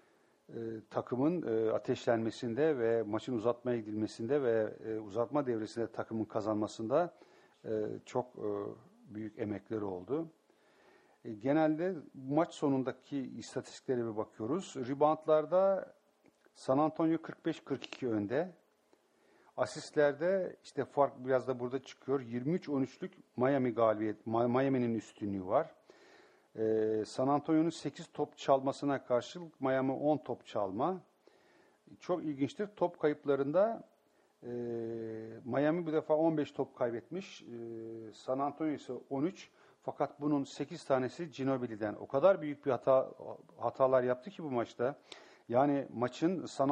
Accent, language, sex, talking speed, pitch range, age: Turkish, English, male, 115 wpm, 115-150 Hz, 50-69